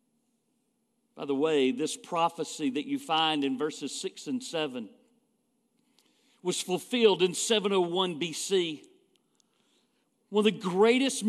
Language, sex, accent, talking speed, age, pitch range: English, male, American, 115 wpm, 50-69, 200-245 Hz